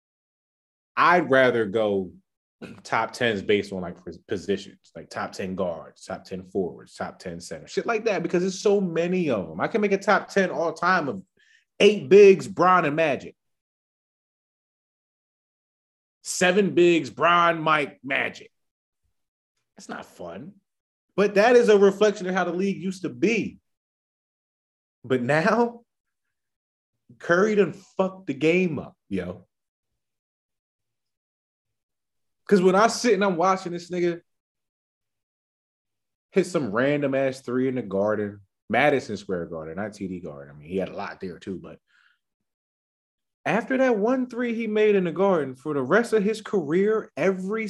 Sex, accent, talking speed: male, American, 150 wpm